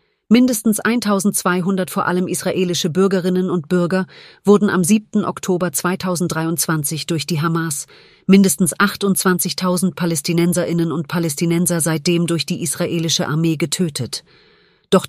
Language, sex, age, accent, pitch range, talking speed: German, female, 40-59, German, 155-185 Hz, 110 wpm